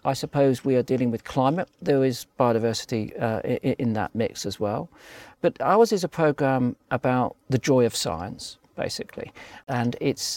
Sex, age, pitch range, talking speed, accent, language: male, 50-69, 105-130 Hz, 175 wpm, British, English